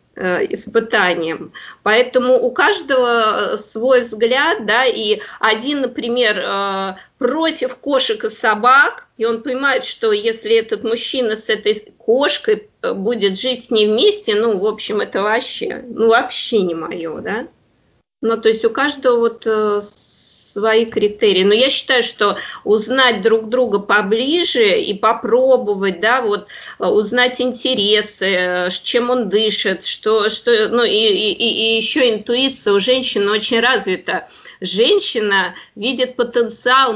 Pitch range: 210-260 Hz